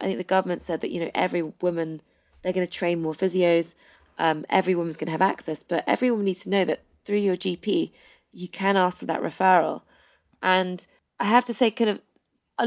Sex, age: female, 20-39